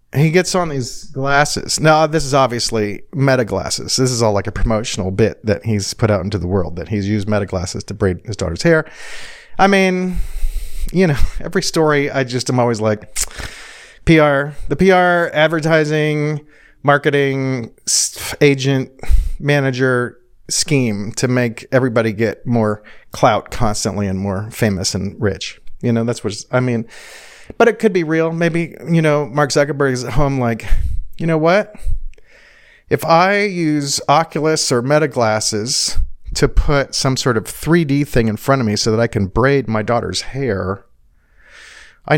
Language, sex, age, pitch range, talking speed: English, male, 40-59, 105-150 Hz, 165 wpm